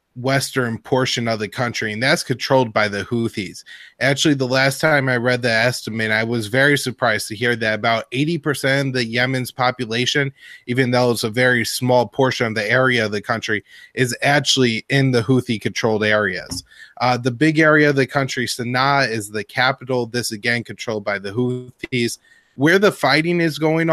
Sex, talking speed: male, 185 wpm